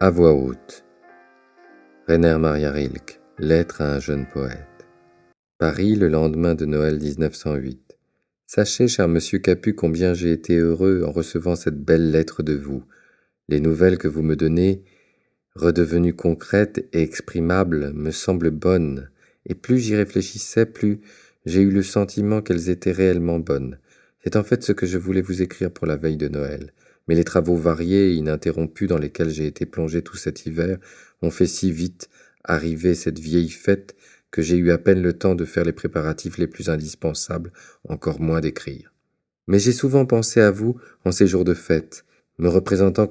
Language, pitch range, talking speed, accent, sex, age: French, 80-95 Hz, 175 wpm, French, male, 40-59